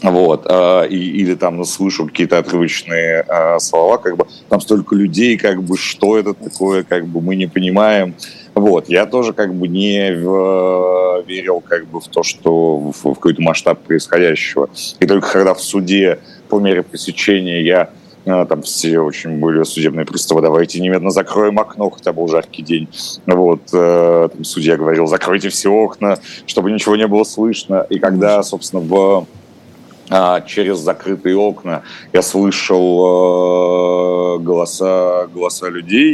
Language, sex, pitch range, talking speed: Russian, male, 85-95 Hz, 145 wpm